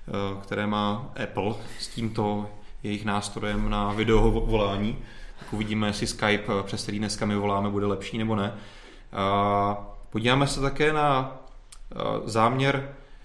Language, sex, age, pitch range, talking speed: Czech, male, 30-49, 100-120 Hz, 125 wpm